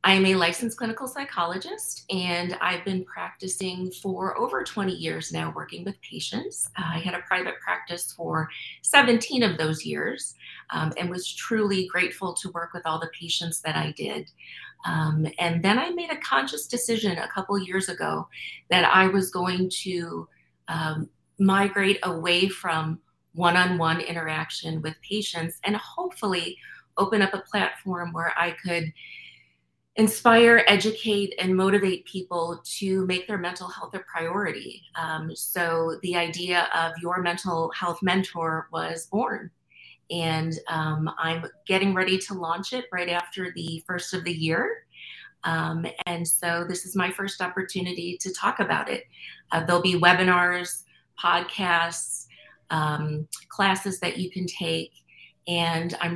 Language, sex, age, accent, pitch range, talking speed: English, female, 30-49, American, 165-190 Hz, 145 wpm